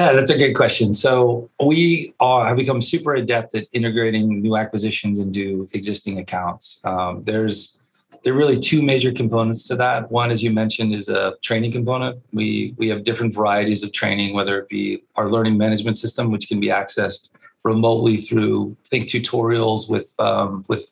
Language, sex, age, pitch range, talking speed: English, male, 30-49, 105-125 Hz, 180 wpm